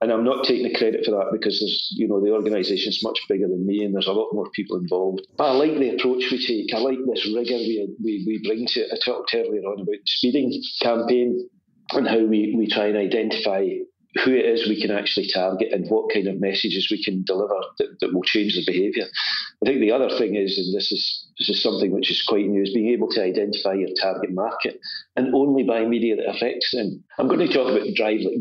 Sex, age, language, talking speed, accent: male, 40-59, English, 245 wpm, British